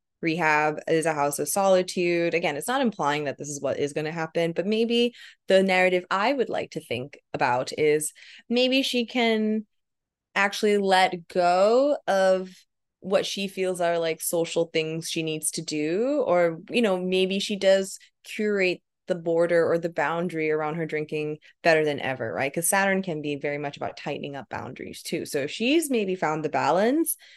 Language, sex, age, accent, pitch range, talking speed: English, female, 20-39, American, 150-195 Hz, 185 wpm